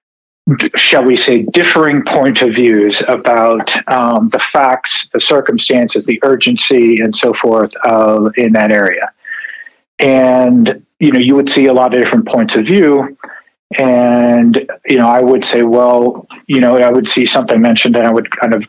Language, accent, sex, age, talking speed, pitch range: English, American, male, 40-59, 175 wpm, 115-155 Hz